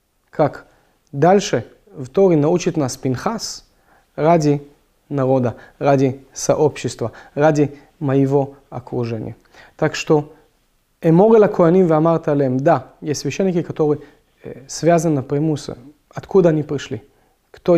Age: 30-49